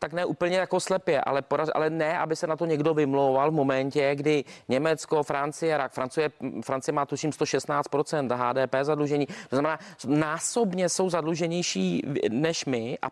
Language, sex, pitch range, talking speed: Czech, male, 145-175 Hz, 165 wpm